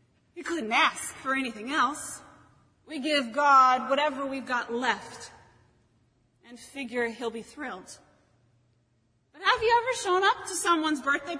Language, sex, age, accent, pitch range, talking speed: English, female, 30-49, American, 245-320 Hz, 140 wpm